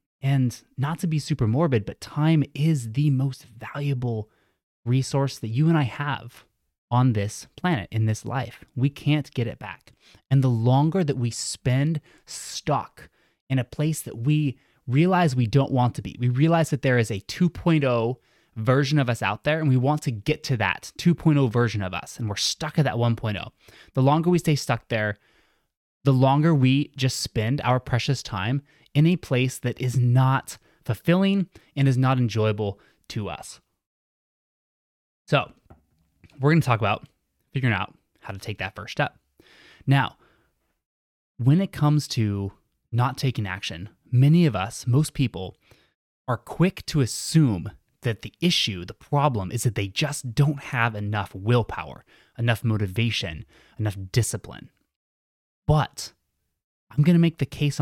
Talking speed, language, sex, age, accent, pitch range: 160 wpm, English, male, 20-39, American, 110-145 Hz